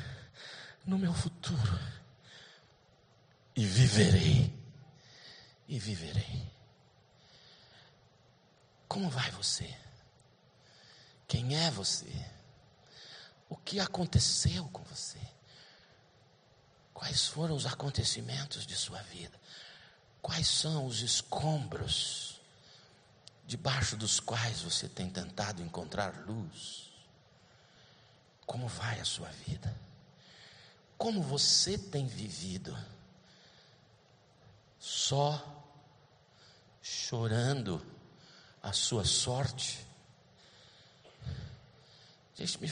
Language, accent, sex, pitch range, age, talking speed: Portuguese, Brazilian, male, 115-145 Hz, 50-69, 75 wpm